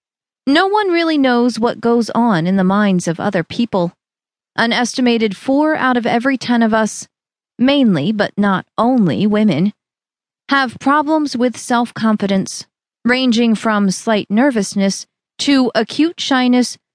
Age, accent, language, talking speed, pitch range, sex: 30-49, American, English, 135 wpm, 210-265 Hz, female